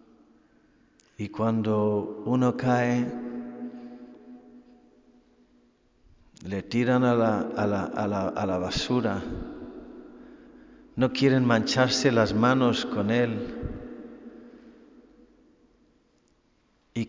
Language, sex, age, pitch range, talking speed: Spanish, male, 50-69, 110-135 Hz, 80 wpm